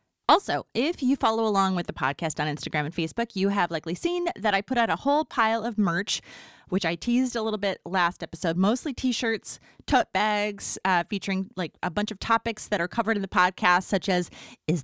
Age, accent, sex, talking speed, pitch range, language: 30-49, American, female, 215 wpm, 180-235 Hz, English